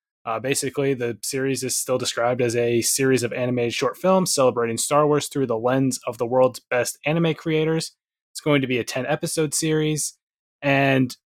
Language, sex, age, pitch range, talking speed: English, male, 20-39, 115-145 Hz, 185 wpm